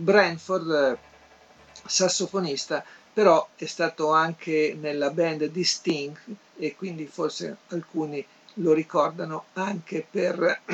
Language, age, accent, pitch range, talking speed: Italian, 50-69, native, 145-180 Hz, 100 wpm